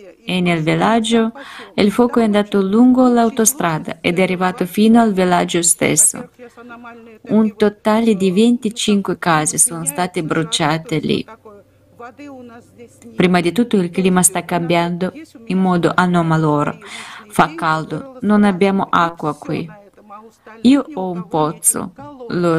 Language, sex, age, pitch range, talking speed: Italian, female, 20-39, 175-230 Hz, 120 wpm